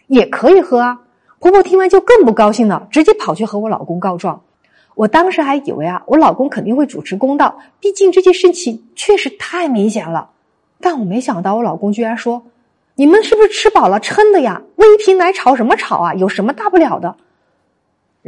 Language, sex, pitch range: Chinese, female, 185-260 Hz